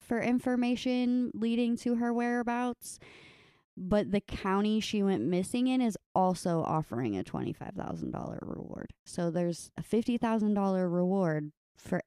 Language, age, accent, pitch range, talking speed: English, 20-39, American, 175-225 Hz, 125 wpm